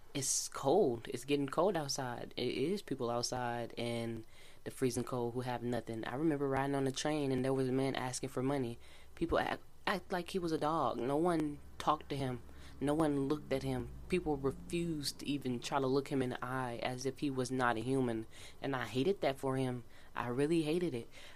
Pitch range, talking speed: 115-145 Hz, 215 wpm